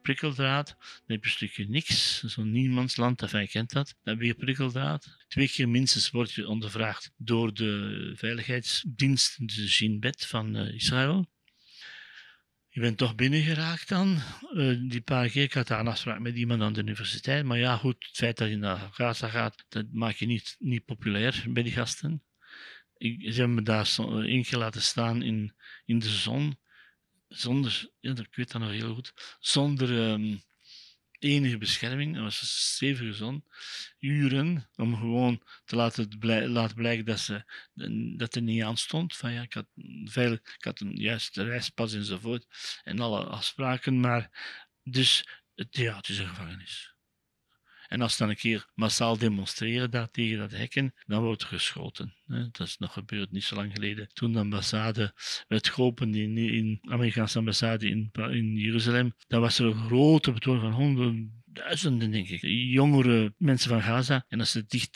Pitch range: 110-130 Hz